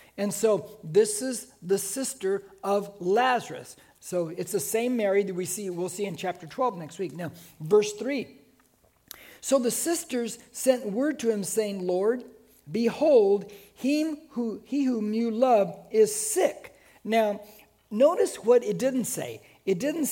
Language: English